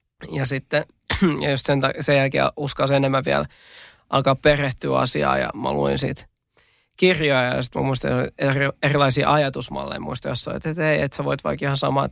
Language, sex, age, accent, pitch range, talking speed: Finnish, male, 20-39, native, 135-160 Hz, 170 wpm